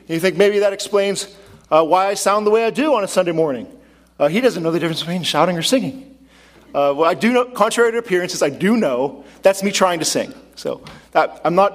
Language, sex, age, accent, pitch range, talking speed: English, male, 40-59, American, 130-200 Hz, 240 wpm